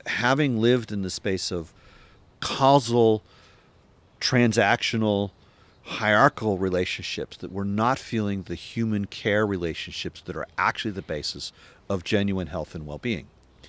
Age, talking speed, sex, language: 50-69, 125 wpm, male, English